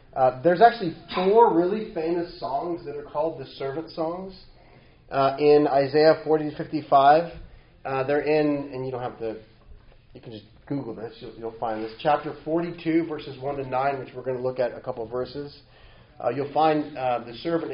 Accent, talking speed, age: American, 195 wpm, 30-49